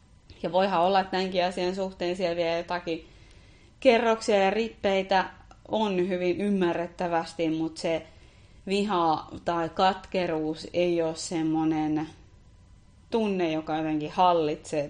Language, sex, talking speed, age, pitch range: Finnish, female, 115 wpm, 30-49, 150-190 Hz